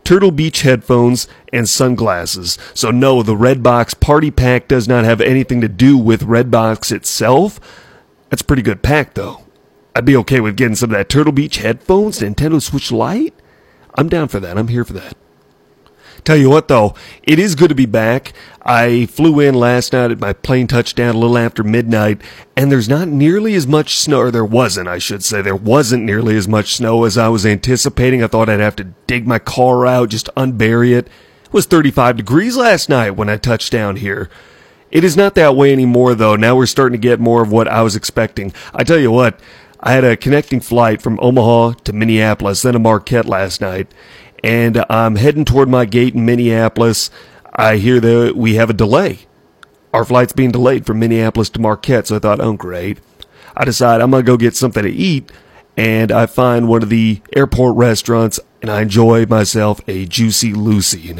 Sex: male